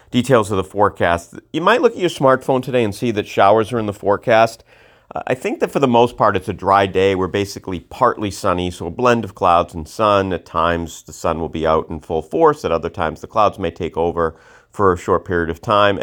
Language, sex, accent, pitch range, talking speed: English, male, American, 85-115 Hz, 245 wpm